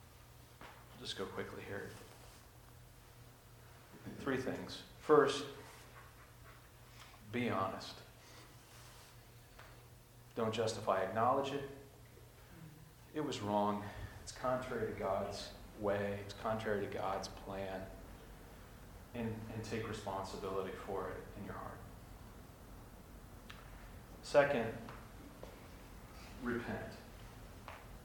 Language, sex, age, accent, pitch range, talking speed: English, male, 40-59, American, 100-120 Hz, 80 wpm